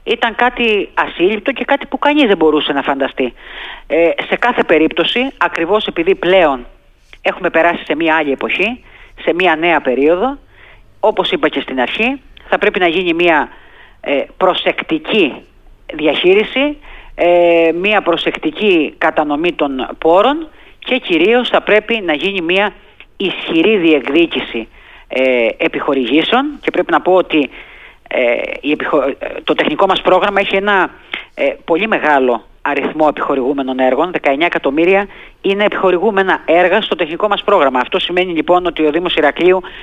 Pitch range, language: 155-220 Hz, Greek